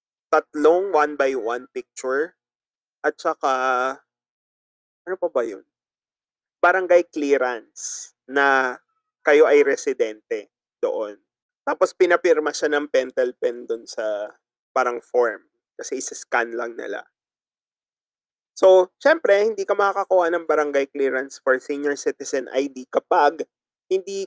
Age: 20-39